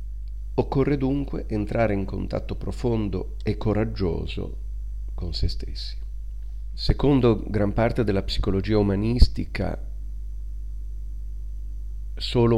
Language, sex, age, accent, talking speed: Italian, male, 40-59, native, 85 wpm